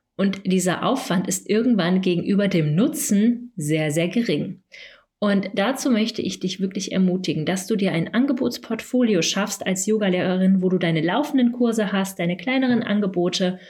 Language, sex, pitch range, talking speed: German, female, 175-220 Hz, 155 wpm